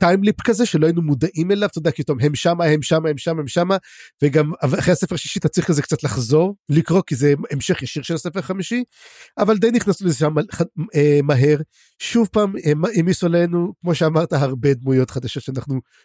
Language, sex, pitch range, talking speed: Hebrew, male, 145-190 Hz, 195 wpm